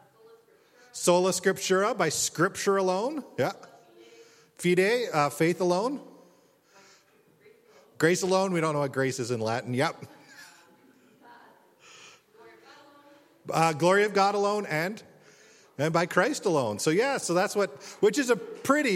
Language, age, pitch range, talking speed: English, 40-59, 145-205 Hz, 125 wpm